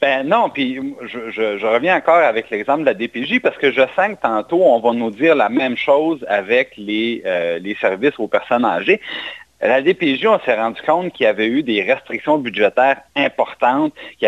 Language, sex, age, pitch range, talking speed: French, male, 40-59, 120-190 Hz, 200 wpm